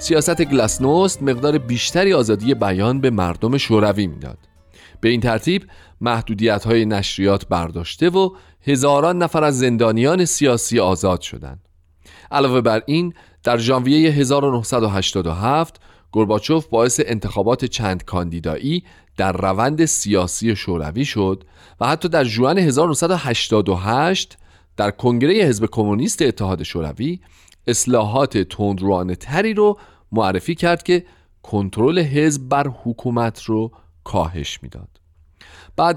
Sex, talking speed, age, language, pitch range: male, 110 wpm, 40-59, Persian, 95-145 Hz